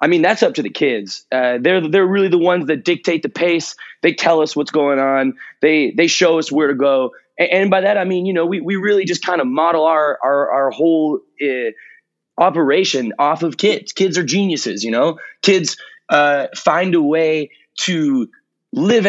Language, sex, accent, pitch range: English, male, American, 155-195 Hz